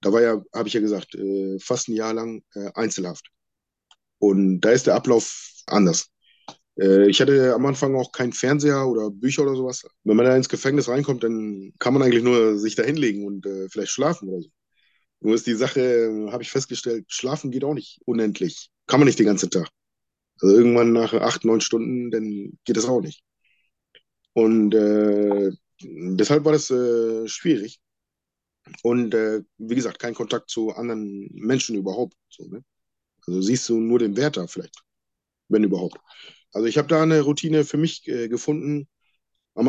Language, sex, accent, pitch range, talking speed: German, male, German, 110-135 Hz, 175 wpm